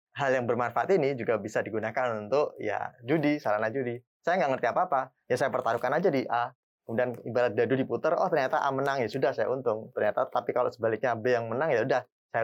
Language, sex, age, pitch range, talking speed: Indonesian, male, 20-39, 120-155 Hz, 210 wpm